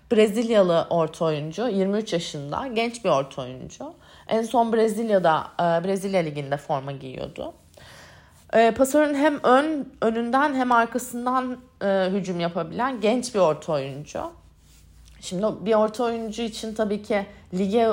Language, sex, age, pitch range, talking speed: Turkish, female, 30-49, 175-230 Hz, 120 wpm